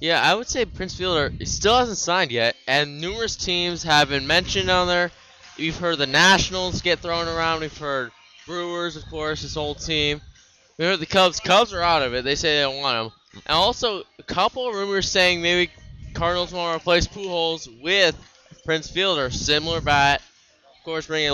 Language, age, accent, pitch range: English, 20-39, American, 145-175 Hz